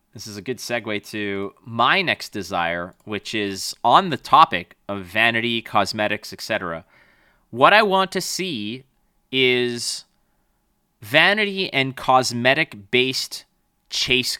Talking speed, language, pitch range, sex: 120 wpm, English, 105-140 Hz, male